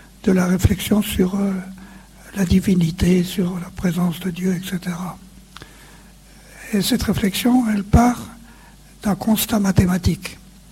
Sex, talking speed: male, 120 wpm